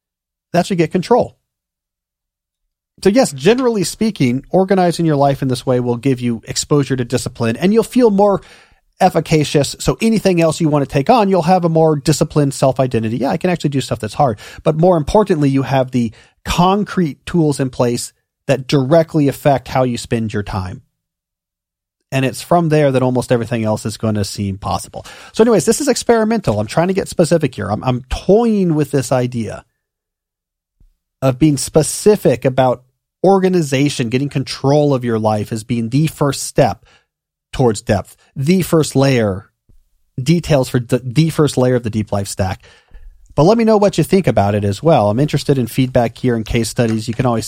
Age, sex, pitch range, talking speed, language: 40-59, male, 115-165 Hz, 185 wpm, English